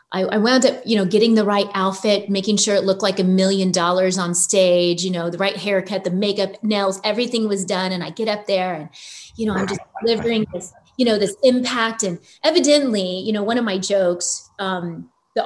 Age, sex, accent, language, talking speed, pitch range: 30-49, female, American, English, 215 wpm, 195-285 Hz